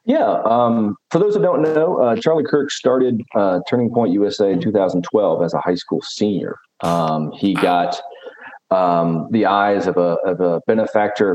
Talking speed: 175 wpm